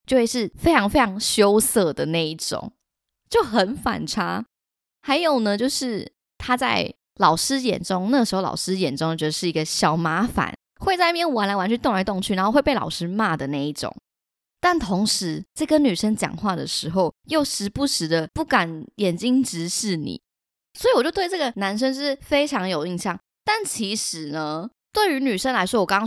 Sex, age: female, 20-39